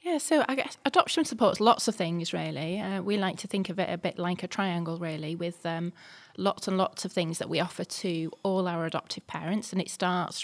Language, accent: English, British